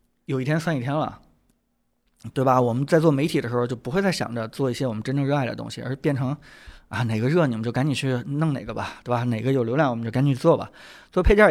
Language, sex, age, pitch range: Chinese, male, 20-39, 115-145 Hz